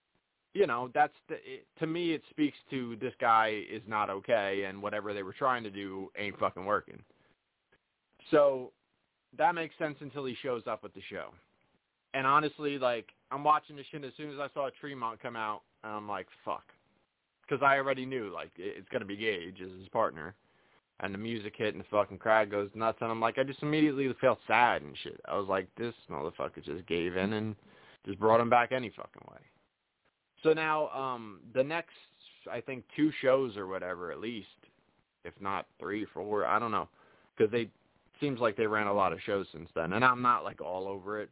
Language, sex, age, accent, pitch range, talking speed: English, male, 20-39, American, 100-135 Hz, 210 wpm